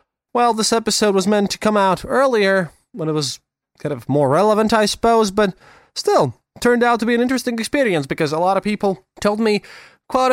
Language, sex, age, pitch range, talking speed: English, male, 20-39, 135-200 Hz, 210 wpm